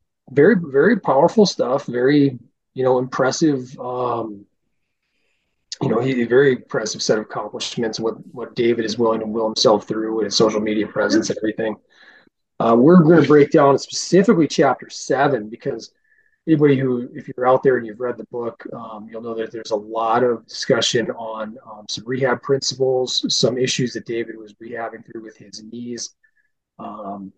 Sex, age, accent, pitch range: male, 30-49, American, 110-135 Hz